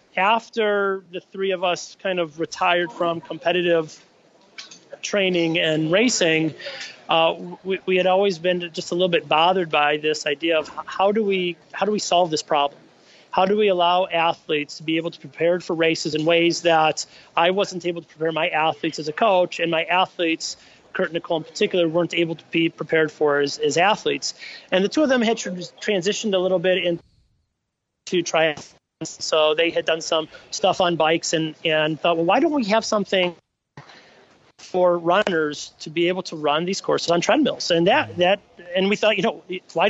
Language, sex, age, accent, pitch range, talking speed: English, male, 30-49, American, 160-185 Hz, 195 wpm